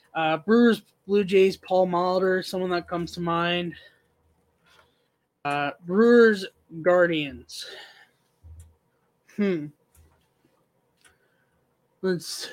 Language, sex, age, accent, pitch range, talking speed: English, male, 20-39, American, 155-185 Hz, 75 wpm